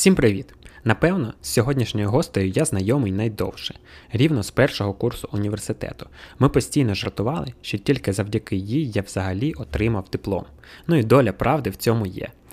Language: Ukrainian